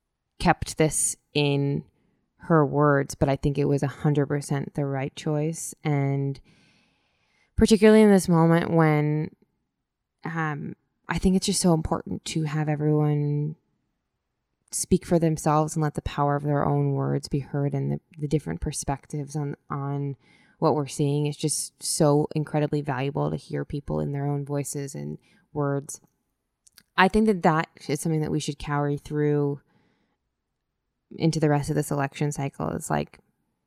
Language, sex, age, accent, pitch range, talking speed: English, female, 20-39, American, 140-155 Hz, 155 wpm